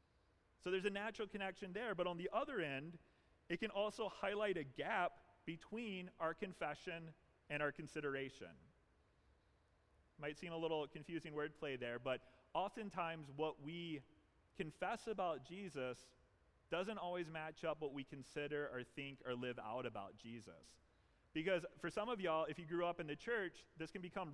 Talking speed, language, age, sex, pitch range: 165 wpm, English, 30-49, male, 140-180 Hz